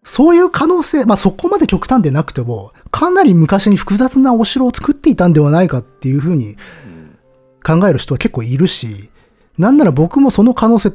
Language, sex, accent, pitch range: Japanese, male, native, 125-200 Hz